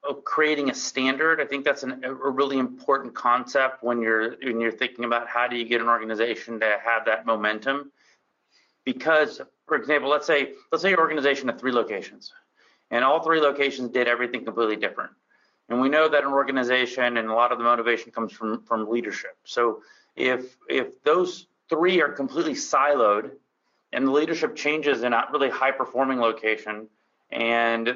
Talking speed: 180 wpm